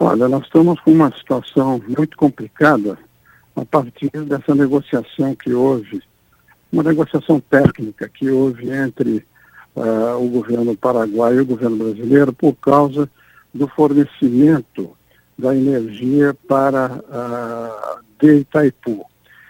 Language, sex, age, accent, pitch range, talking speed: Portuguese, male, 60-79, Brazilian, 125-160 Hz, 110 wpm